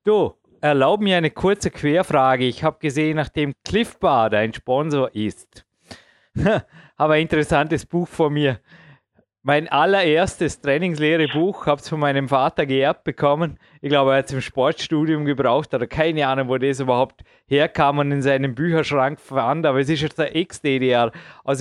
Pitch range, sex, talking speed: 140-175 Hz, male, 160 wpm